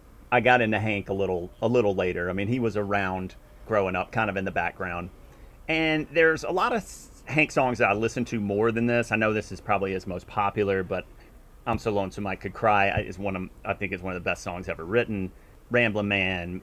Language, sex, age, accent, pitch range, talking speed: English, male, 30-49, American, 95-115 Hz, 235 wpm